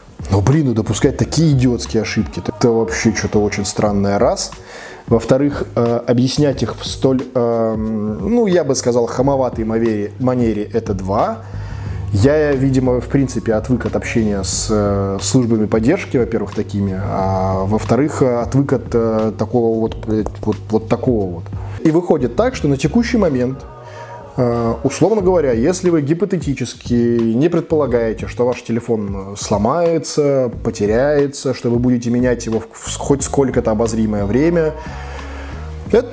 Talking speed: 130 wpm